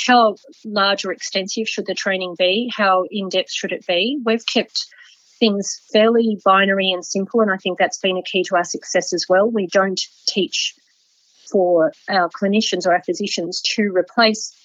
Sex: female